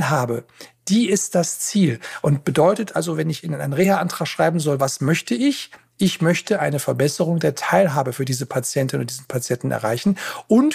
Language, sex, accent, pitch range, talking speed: German, male, German, 140-190 Hz, 180 wpm